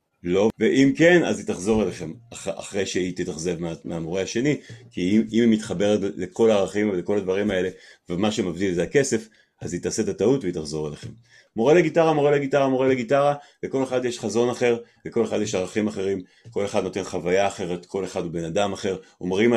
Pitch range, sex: 100-130 Hz, male